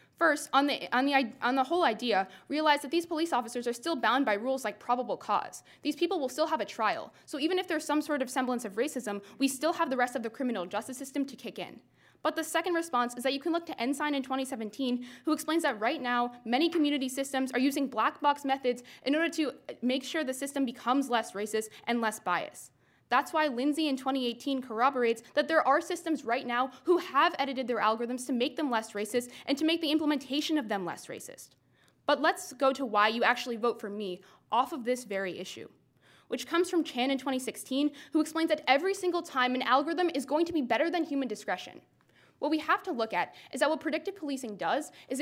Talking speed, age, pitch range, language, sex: 225 wpm, 10-29, 240-305 Hz, English, female